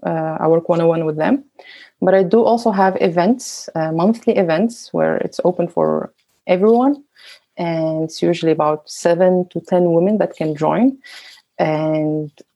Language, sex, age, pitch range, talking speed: Danish, female, 30-49, 160-205 Hz, 155 wpm